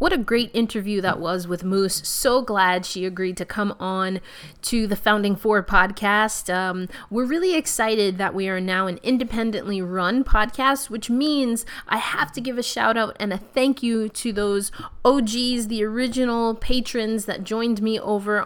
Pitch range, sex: 190-235 Hz, female